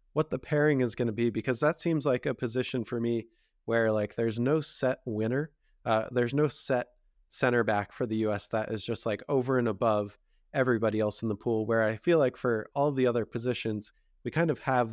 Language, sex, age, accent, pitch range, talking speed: English, male, 20-39, American, 115-130 Hz, 225 wpm